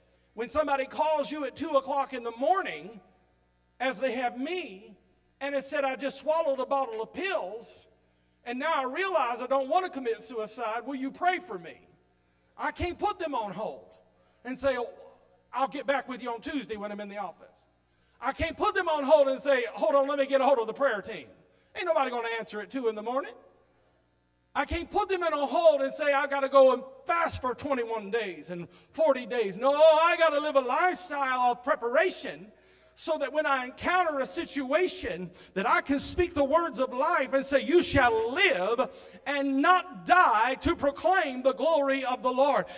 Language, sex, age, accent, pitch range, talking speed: English, male, 40-59, American, 255-320 Hz, 210 wpm